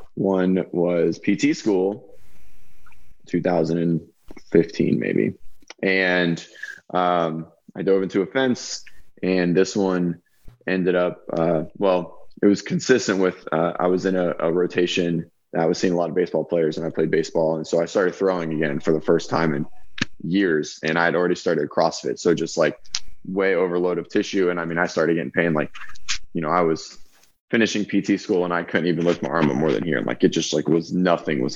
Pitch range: 85-95 Hz